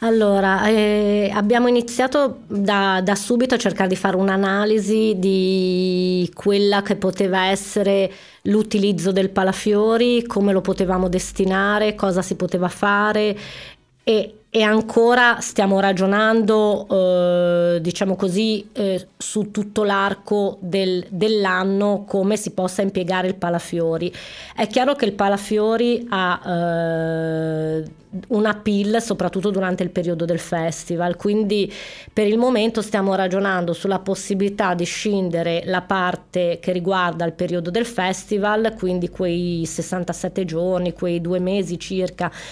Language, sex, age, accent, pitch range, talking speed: Italian, female, 20-39, native, 180-210 Hz, 125 wpm